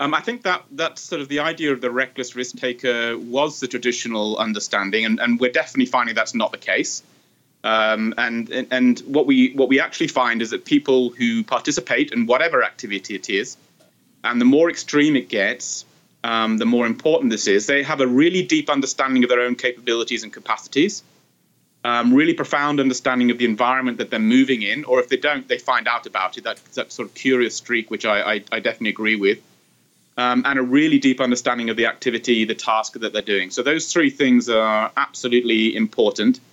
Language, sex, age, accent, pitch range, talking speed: English, male, 30-49, British, 115-145 Hz, 200 wpm